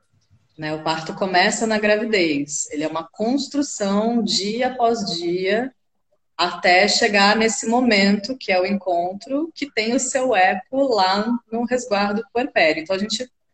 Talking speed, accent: 145 wpm, Brazilian